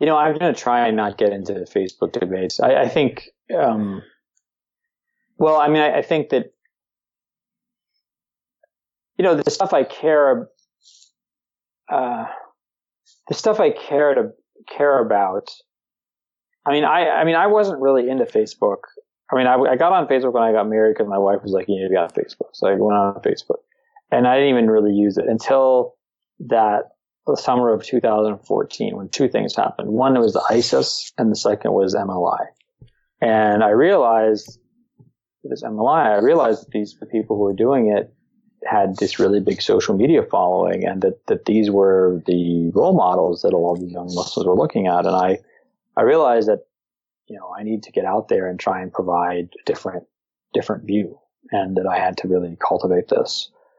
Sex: male